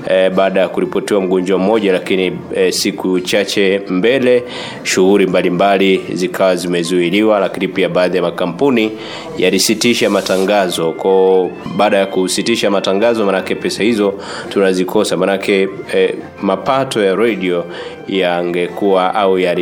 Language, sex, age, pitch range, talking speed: Swahili, male, 30-49, 90-100 Hz, 115 wpm